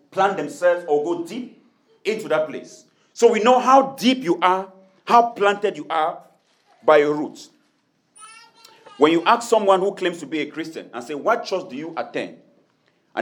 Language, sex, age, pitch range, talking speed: English, male, 40-59, 150-235 Hz, 180 wpm